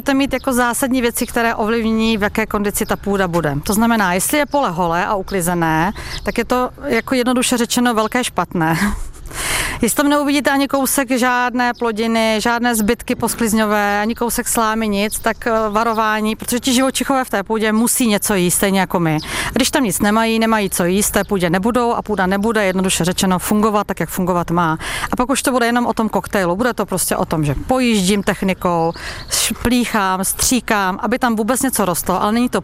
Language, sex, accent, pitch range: Czech, female, native, 195-240 Hz